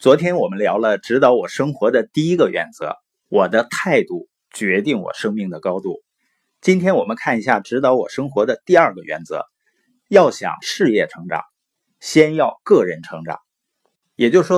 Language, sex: Chinese, male